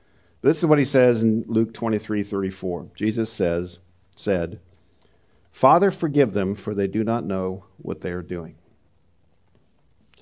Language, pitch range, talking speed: English, 90-130 Hz, 140 wpm